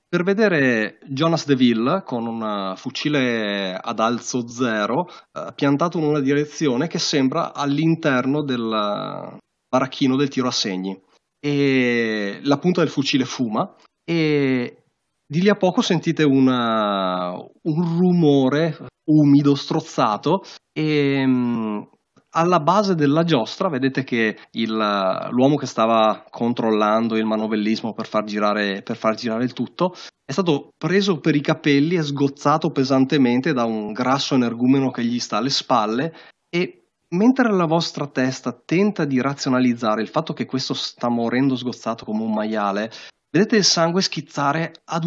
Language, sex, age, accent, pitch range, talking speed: Italian, male, 30-49, native, 115-160 Hz, 135 wpm